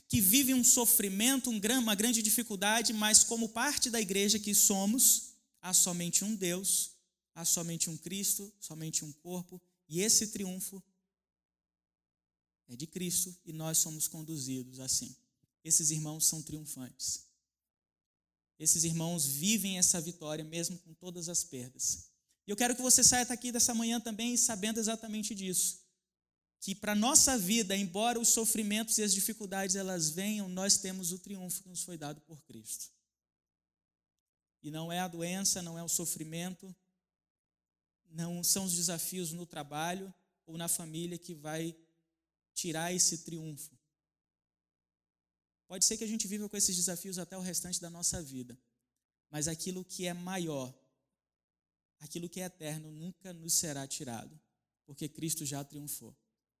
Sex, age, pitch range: male, 20-39, 155-200 Hz